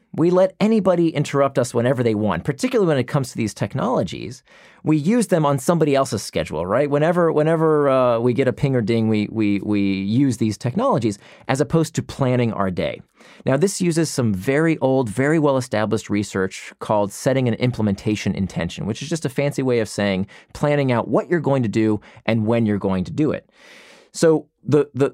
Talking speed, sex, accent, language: 200 wpm, male, American, English